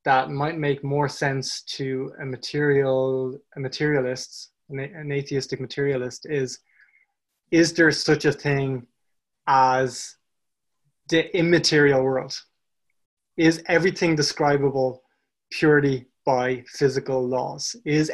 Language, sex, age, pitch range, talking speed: English, male, 20-39, 135-165 Hz, 105 wpm